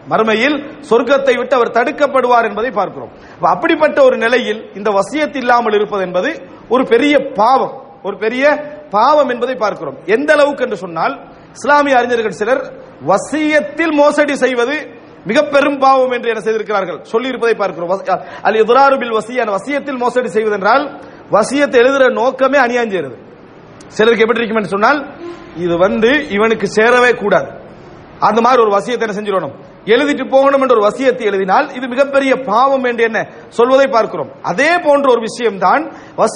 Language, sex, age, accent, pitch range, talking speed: English, male, 40-59, Indian, 220-275 Hz, 120 wpm